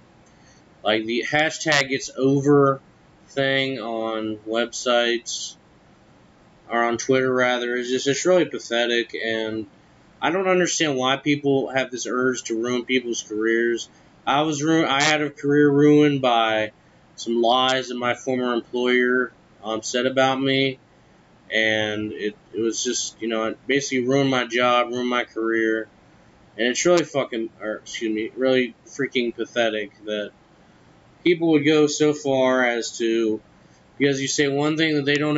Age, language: 20-39, English